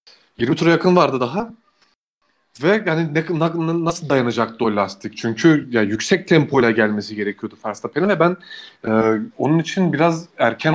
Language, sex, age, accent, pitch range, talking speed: Turkish, male, 30-49, native, 130-165 Hz, 150 wpm